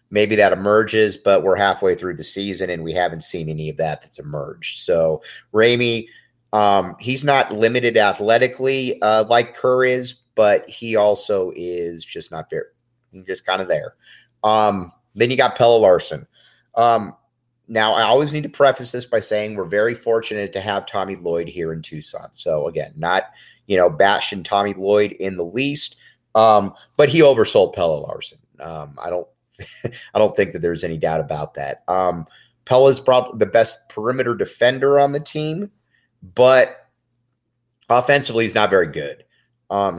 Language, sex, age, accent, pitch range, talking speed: English, male, 30-49, American, 95-125 Hz, 170 wpm